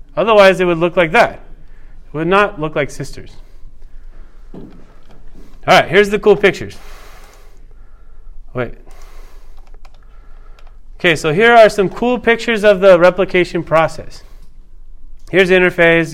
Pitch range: 155-215 Hz